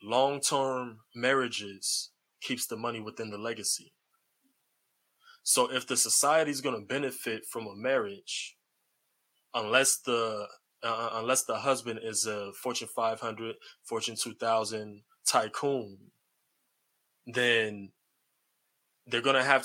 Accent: American